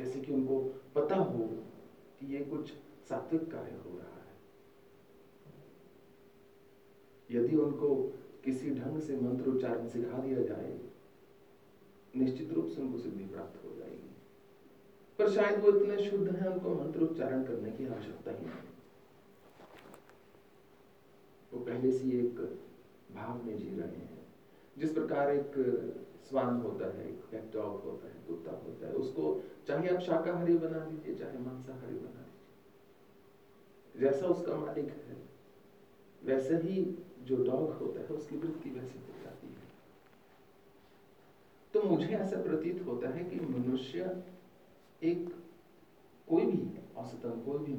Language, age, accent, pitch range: Telugu, 40-59, native, 125-175 Hz